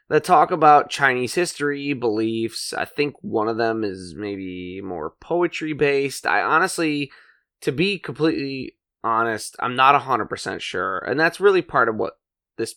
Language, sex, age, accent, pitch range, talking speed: English, male, 20-39, American, 110-160 Hz, 150 wpm